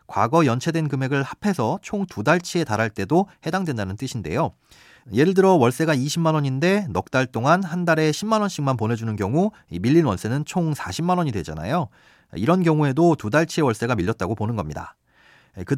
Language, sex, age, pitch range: Korean, male, 40-59, 115-165 Hz